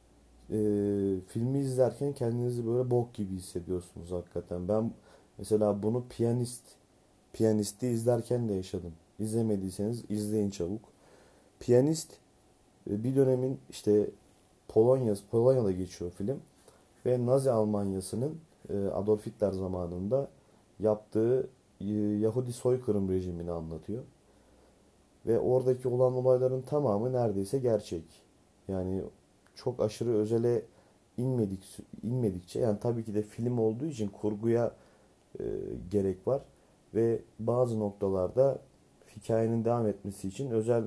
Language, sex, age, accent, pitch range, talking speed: Turkish, male, 40-59, native, 100-120 Hz, 110 wpm